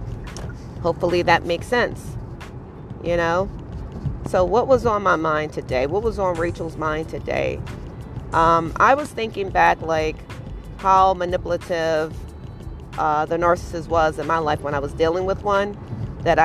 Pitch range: 155-175 Hz